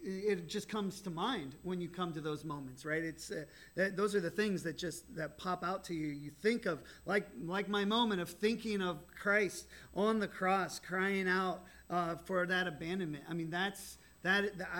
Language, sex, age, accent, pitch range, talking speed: English, male, 30-49, American, 170-220 Hz, 205 wpm